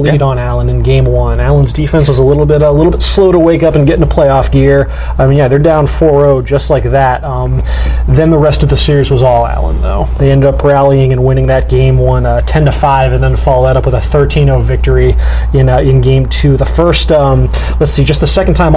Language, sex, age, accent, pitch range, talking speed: English, male, 20-39, American, 125-150 Hz, 245 wpm